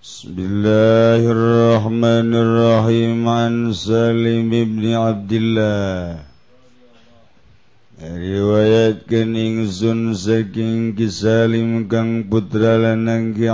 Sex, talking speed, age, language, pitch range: male, 55 wpm, 50-69, Indonesian, 110-115 Hz